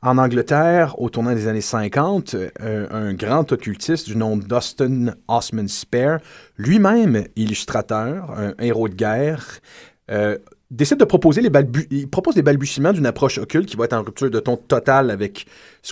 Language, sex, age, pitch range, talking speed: French, male, 30-49, 105-140 Hz, 170 wpm